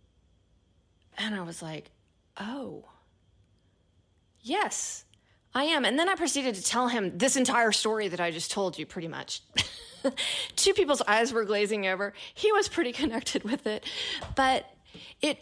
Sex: female